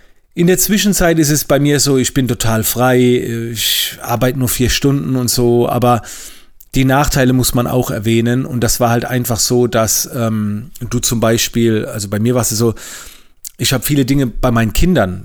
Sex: male